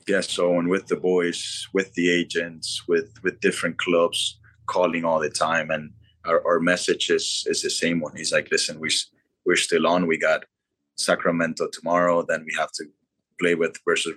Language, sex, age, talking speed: English, male, 20-39, 185 wpm